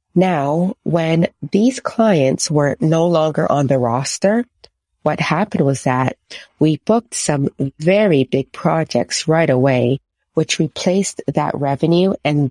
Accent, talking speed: American, 130 wpm